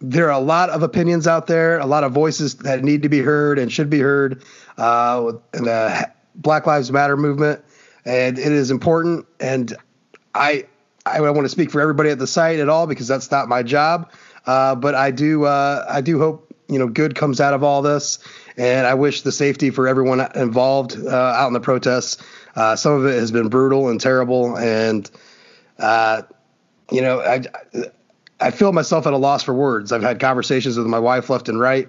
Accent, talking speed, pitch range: American, 210 wpm, 125-150 Hz